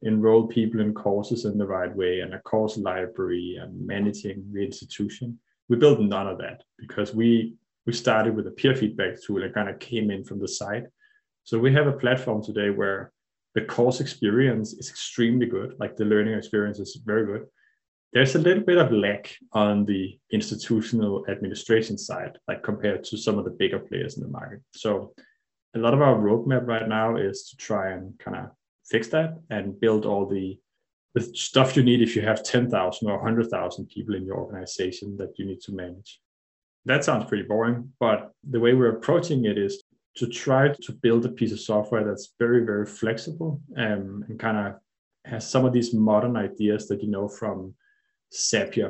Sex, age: male, 20-39